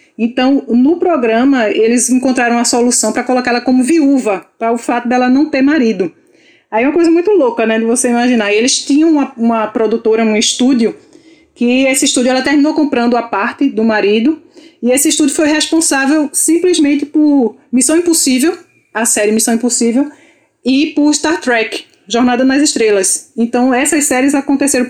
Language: Portuguese